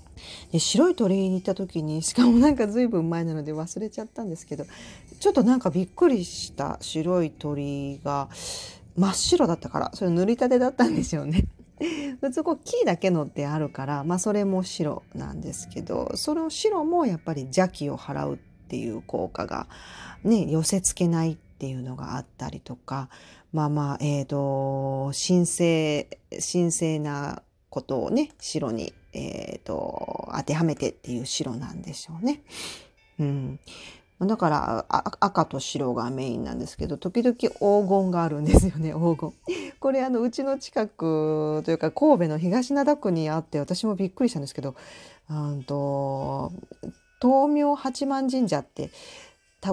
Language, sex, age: Japanese, female, 40-59